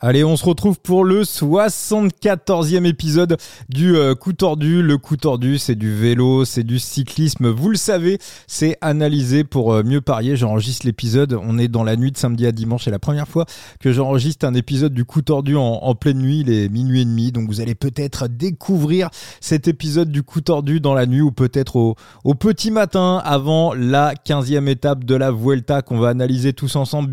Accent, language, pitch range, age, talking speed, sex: French, French, 125-160 Hz, 30-49, 205 wpm, male